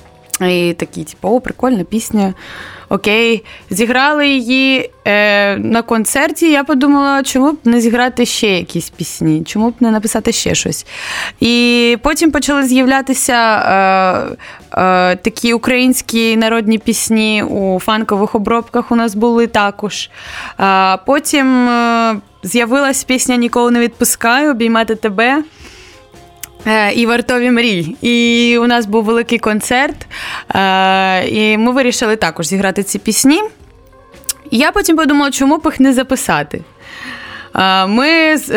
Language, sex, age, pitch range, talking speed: Ukrainian, female, 20-39, 200-250 Hz, 115 wpm